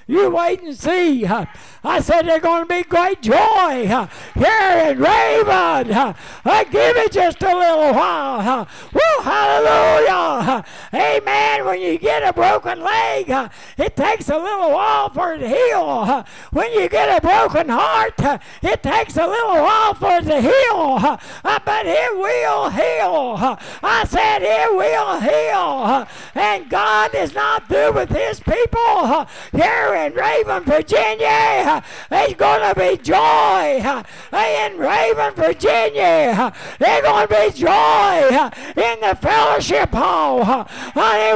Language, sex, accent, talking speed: English, male, American, 135 wpm